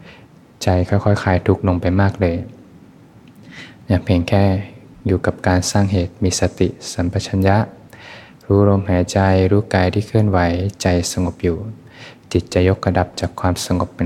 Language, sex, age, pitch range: Thai, male, 20-39, 90-95 Hz